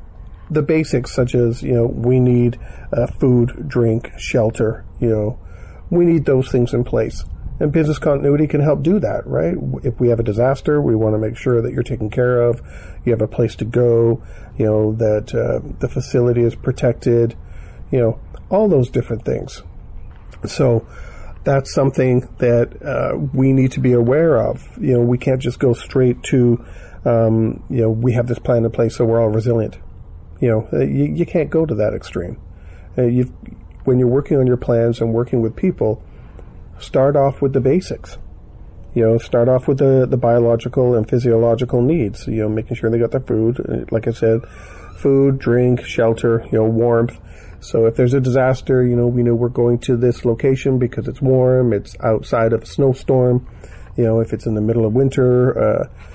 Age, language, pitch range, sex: 40-59, English, 110-130 Hz, male